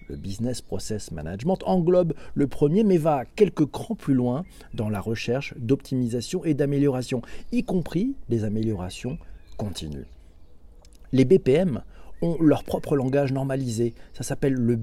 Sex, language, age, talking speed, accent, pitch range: male, French, 50-69, 140 wpm, French, 110-155 Hz